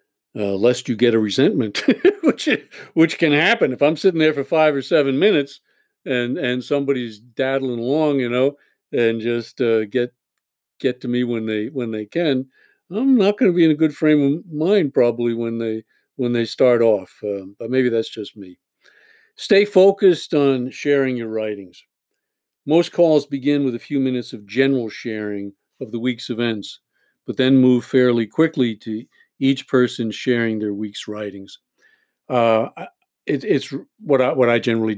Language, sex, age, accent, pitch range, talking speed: English, male, 50-69, American, 110-140 Hz, 175 wpm